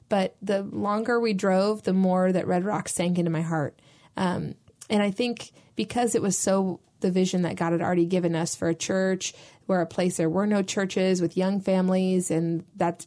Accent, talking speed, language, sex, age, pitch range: American, 205 wpm, English, female, 20-39, 175-200 Hz